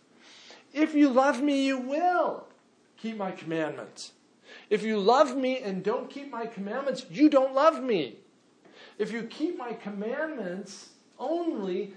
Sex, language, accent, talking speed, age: male, English, American, 140 wpm, 50-69